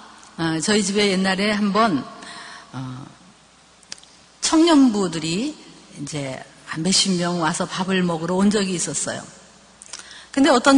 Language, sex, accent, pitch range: Korean, female, native, 185-265 Hz